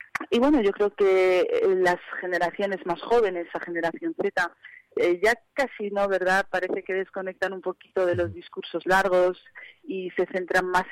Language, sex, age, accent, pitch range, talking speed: Spanish, female, 40-59, Spanish, 175-215 Hz, 165 wpm